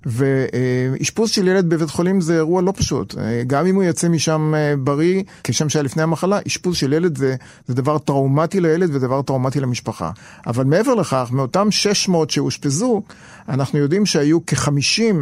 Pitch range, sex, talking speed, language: 140-190 Hz, male, 160 wpm, Hebrew